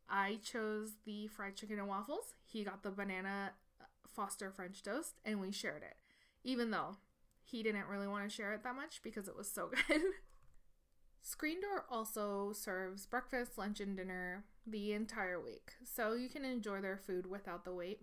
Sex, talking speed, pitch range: female, 180 wpm, 200-245 Hz